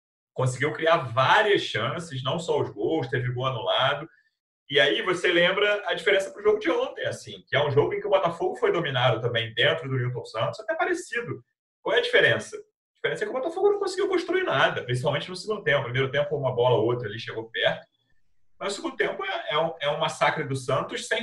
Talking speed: 225 wpm